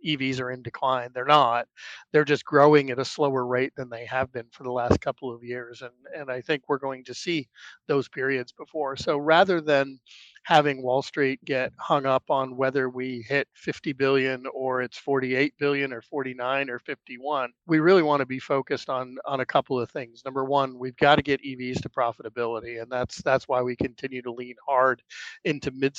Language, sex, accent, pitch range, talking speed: English, male, American, 125-140 Hz, 205 wpm